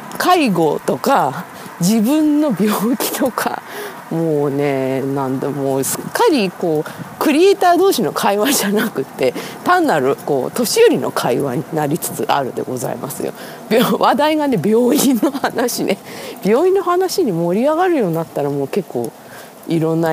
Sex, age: female, 40-59